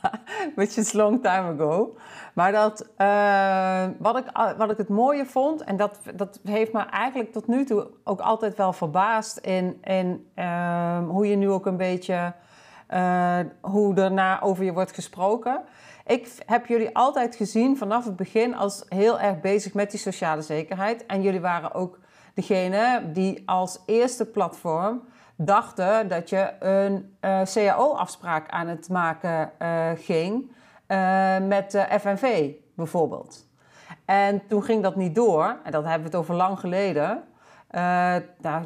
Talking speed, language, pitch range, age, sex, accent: 150 wpm, Dutch, 175-215 Hz, 40-59, female, Dutch